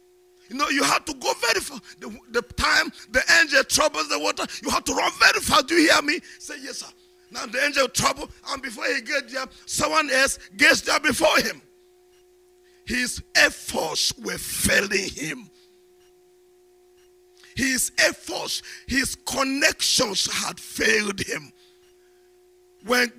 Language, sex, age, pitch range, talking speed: English, male, 50-69, 270-360 Hz, 150 wpm